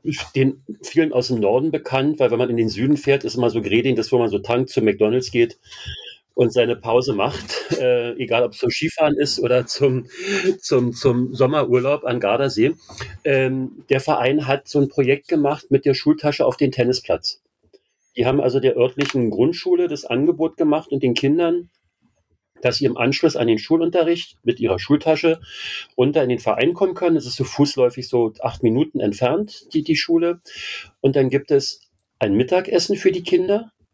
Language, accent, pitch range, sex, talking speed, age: German, German, 125-160 Hz, male, 185 wpm, 40-59